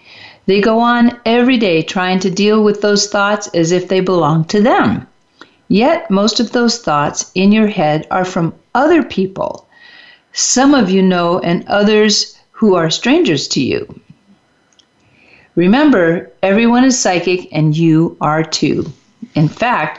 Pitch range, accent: 175-220 Hz, American